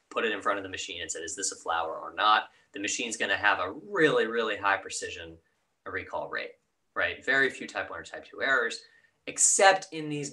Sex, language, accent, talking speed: male, English, American, 230 wpm